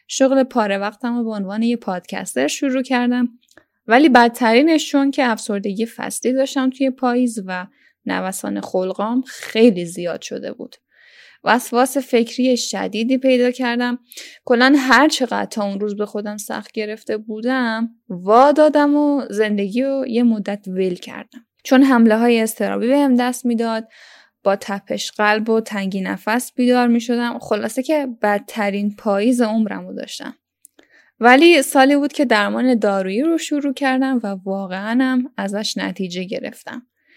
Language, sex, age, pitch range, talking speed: Persian, female, 10-29, 210-265 Hz, 145 wpm